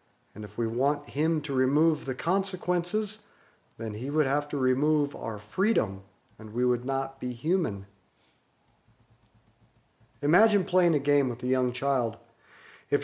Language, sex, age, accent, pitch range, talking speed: English, male, 50-69, American, 115-145 Hz, 145 wpm